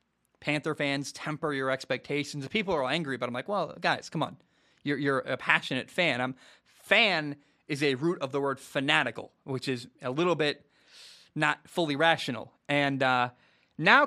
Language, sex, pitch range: English, male, 130-180 Hz